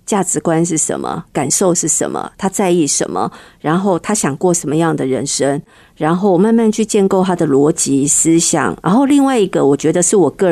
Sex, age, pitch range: female, 50-69, 155-195 Hz